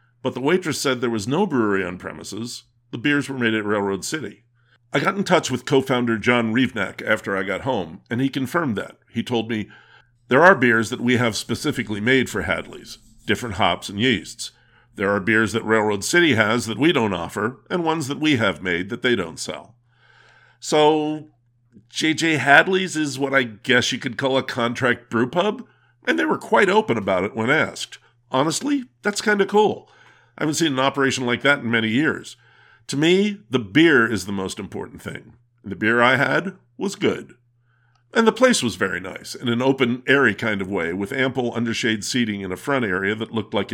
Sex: male